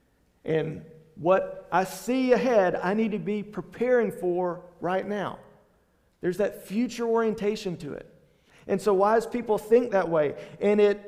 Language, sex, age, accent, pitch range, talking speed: English, male, 40-59, American, 160-215 Hz, 150 wpm